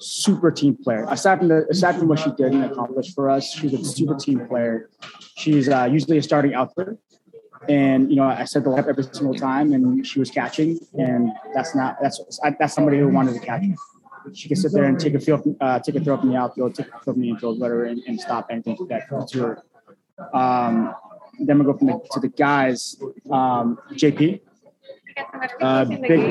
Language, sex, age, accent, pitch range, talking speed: English, male, 20-39, American, 130-165 Hz, 215 wpm